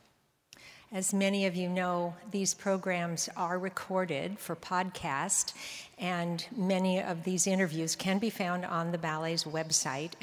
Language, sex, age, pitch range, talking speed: English, female, 50-69, 160-190 Hz, 135 wpm